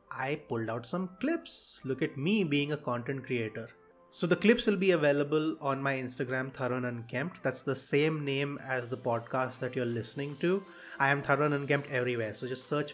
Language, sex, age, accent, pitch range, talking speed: English, male, 30-49, Indian, 125-150 Hz, 205 wpm